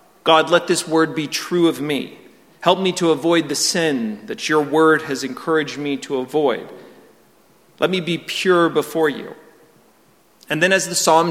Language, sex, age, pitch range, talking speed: English, male, 40-59, 135-170 Hz, 175 wpm